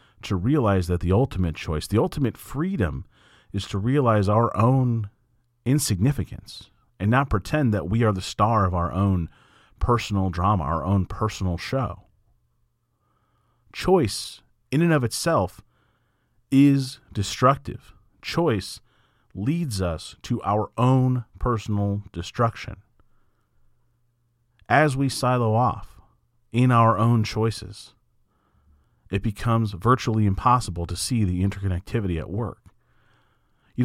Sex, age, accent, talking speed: male, 40-59, American, 115 wpm